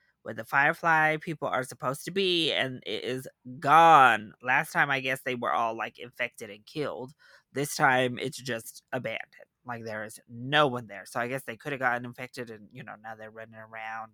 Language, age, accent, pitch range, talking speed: English, 20-39, American, 125-160 Hz, 210 wpm